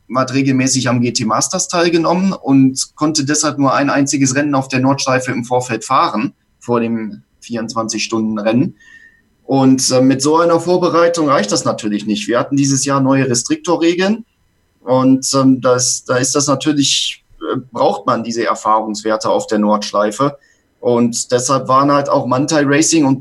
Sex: male